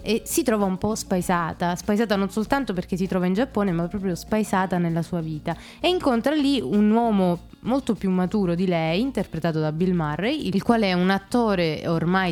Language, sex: Italian, female